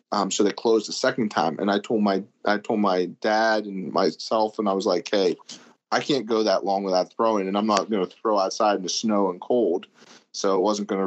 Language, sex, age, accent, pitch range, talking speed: English, male, 30-49, American, 100-110 Hz, 240 wpm